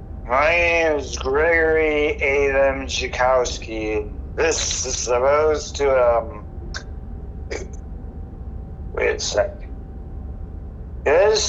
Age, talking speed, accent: 60-79, 80 wpm, American